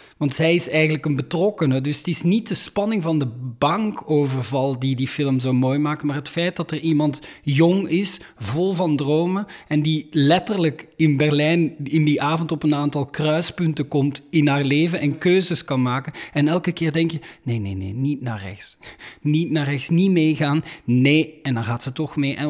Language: Dutch